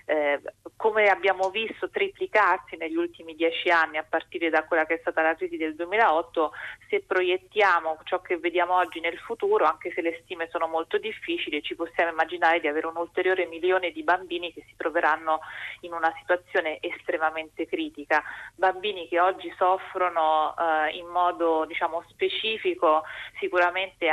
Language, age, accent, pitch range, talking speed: Italian, 30-49, native, 160-180 Hz, 155 wpm